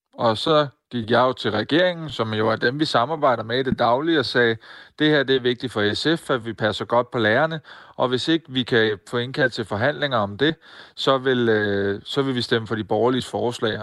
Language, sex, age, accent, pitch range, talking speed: Danish, male, 30-49, native, 115-135 Hz, 235 wpm